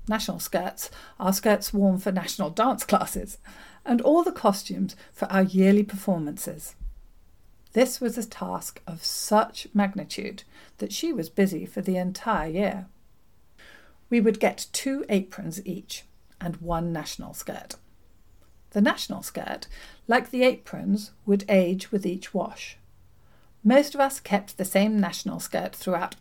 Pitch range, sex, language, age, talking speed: 185-225 Hz, female, English, 50-69, 140 wpm